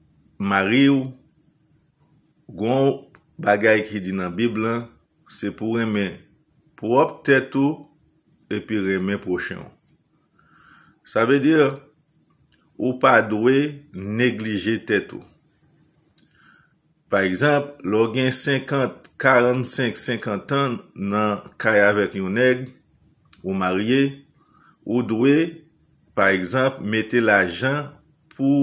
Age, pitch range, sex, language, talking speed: 50-69, 105-135 Hz, male, English, 100 wpm